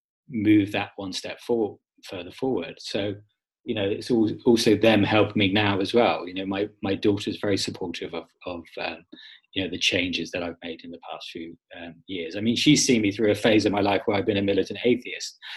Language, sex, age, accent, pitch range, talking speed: English, male, 20-39, British, 100-115 Hz, 225 wpm